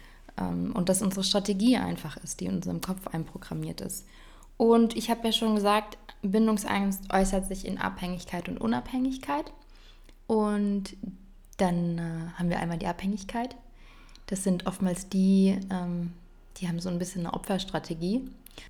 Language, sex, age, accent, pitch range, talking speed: English, female, 20-39, German, 170-210 Hz, 150 wpm